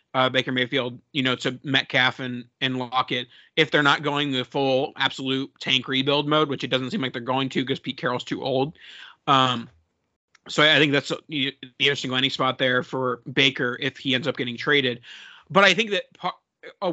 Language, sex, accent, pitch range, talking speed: English, male, American, 130-160 Hz, 200 wpm